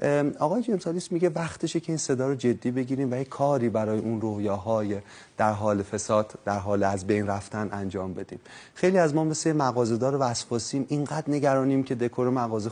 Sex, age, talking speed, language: male, 30-49, 175 wpm, Persian